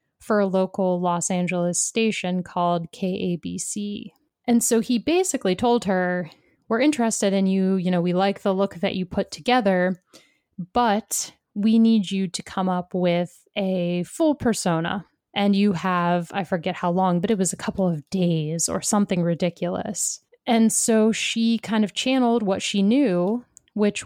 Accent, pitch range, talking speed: American, 180-210 Hz, 165 wpm